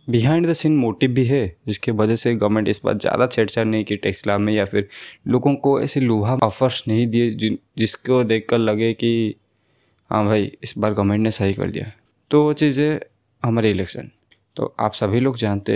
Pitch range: 105-130 Hz